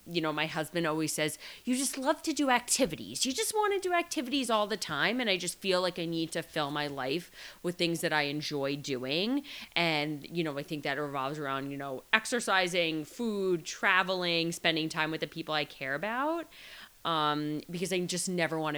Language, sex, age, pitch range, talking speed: English, female, 20-39, 145-185 Hz, 210 wpm